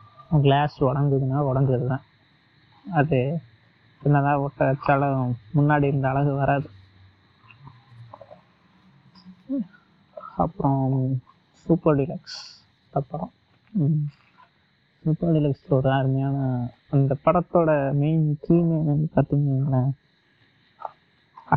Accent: native